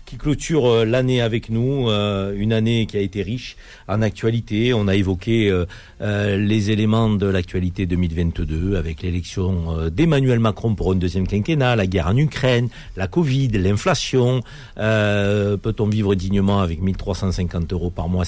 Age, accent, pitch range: 50-69, French, 95-115 Hz